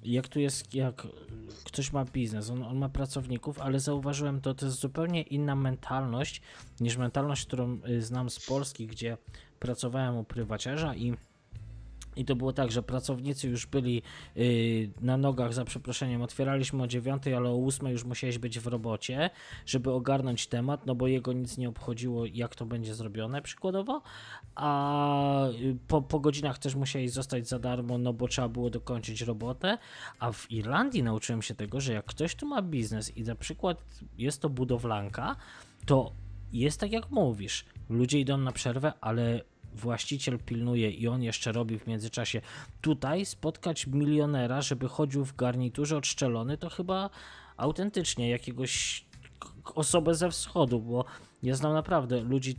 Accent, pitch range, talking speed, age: native, 120-140 Hz, 160 wpm, 20-39